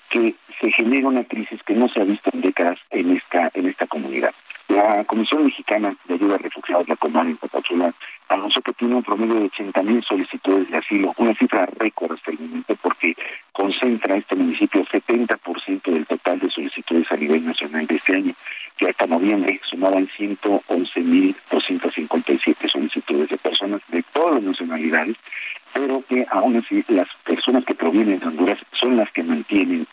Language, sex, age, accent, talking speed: Spanish, male, 50-69, Mexican, 170 wpm